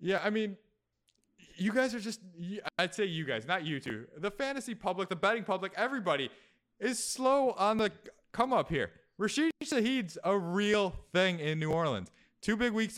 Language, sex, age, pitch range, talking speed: English, male, 20-39, 165-220 Hz, 180 wpm